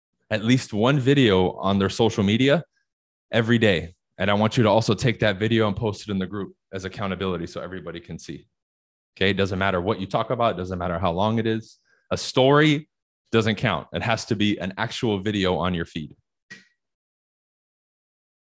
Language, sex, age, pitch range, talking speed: English, male, 20-39, 95-125 Hz, 195 wpm